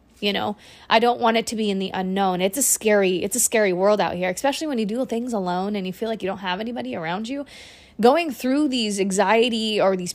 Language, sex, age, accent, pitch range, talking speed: English, female, 20-39, American, 190-225 Hz, 250 wpm